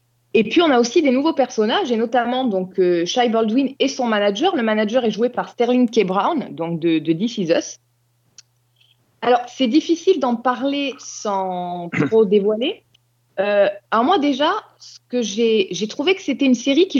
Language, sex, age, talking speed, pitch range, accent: French, female, 20-39, 185 wpm, 195-270 Hz, French